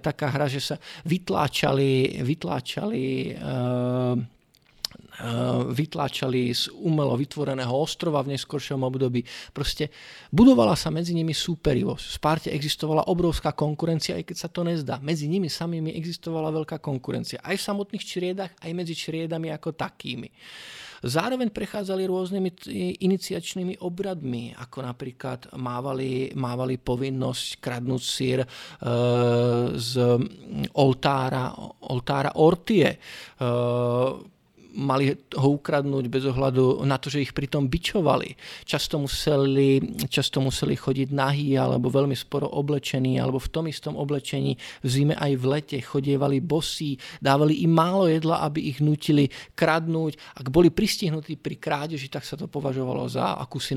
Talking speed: 135 wpm